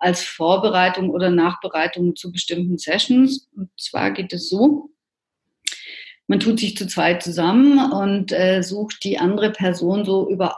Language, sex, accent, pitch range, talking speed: German, female, German, 175-220 Hz, 145 wpm